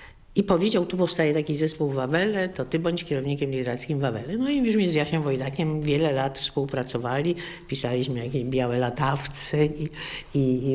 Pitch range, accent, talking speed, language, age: 140-190 Hz, native, 165 wpm, Polish, 50-69